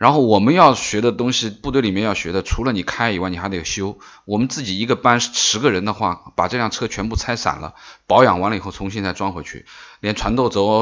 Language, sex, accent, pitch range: Chinese, male, native, 90-115 Hz